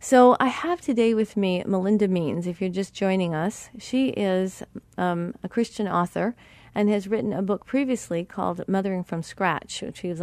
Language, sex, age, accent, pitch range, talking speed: English, female, 40-59, American, 170-220 Hz, 180 wpm